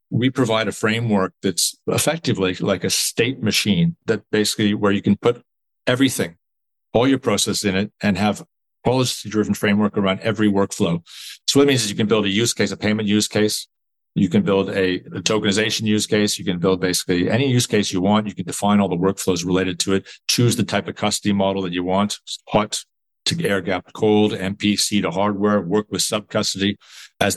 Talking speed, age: 200 wpm, 40-59